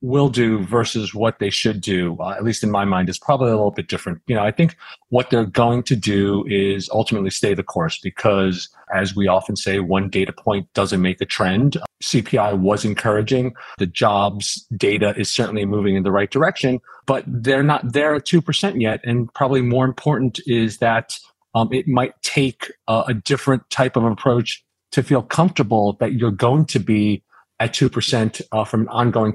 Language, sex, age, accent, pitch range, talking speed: English, male, 40-59, American, 110-130 Hz, 195 wpm